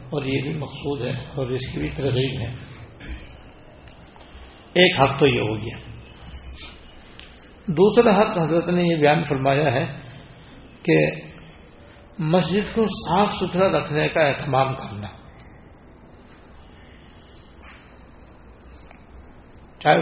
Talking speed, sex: 105 wpm, male